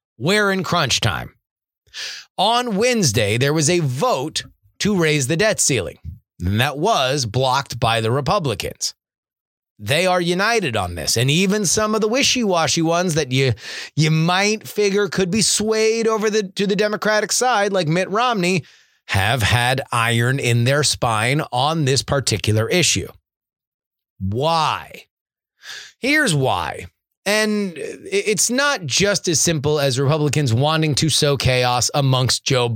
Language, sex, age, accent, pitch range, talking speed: English, male, 30-49, American, 125-185 Hz, 145 wpm